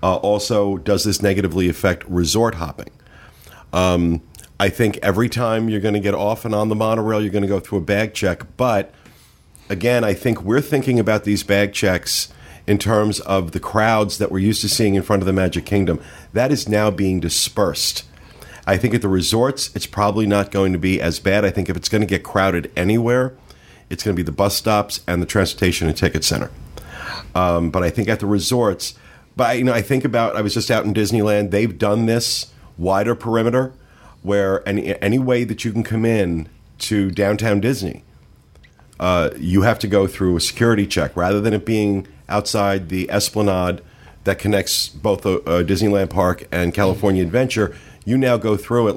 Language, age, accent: English, 50-69, American